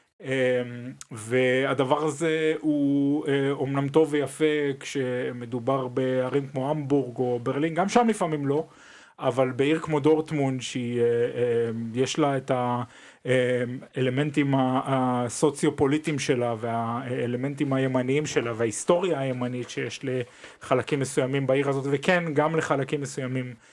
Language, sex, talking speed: Hebrew, male, 110 wpm